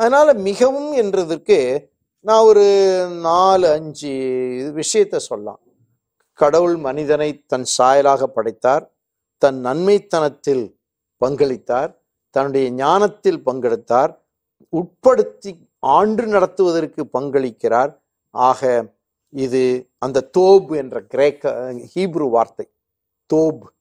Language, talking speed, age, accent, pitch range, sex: Tamil, 85 wpm, 50-69, native, 130-220 Hz, male